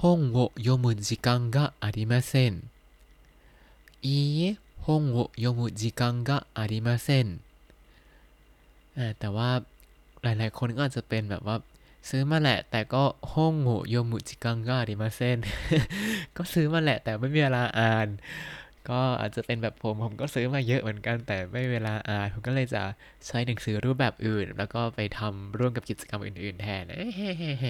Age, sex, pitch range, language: 20-39, male, 105-130 Hz, Thai